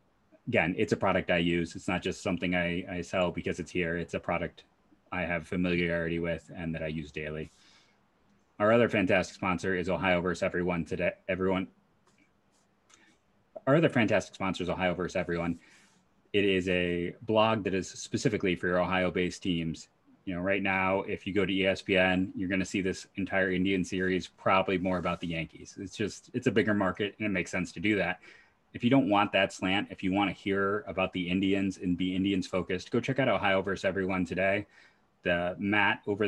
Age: 30-49